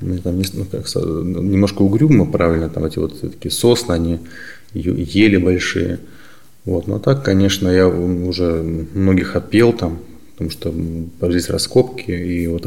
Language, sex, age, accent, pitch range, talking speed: Russian, male, 20-39, native, 85-105 Hz, 140 wpm